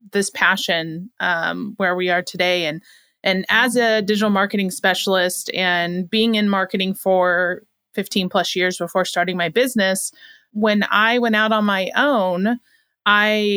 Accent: American